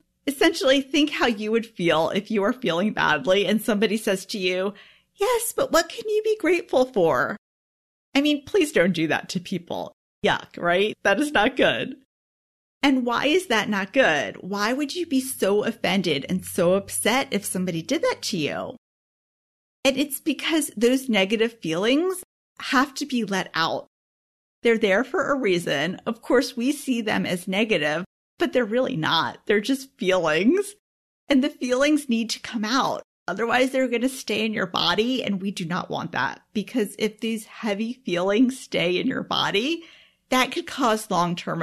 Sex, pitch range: female, 190-270 Hz